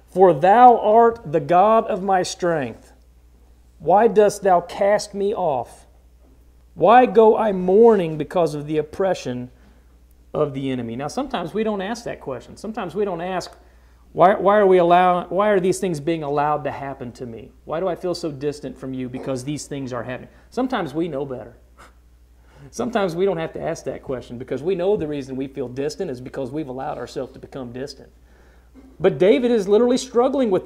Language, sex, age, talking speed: English, male, 40-59, 185 wpm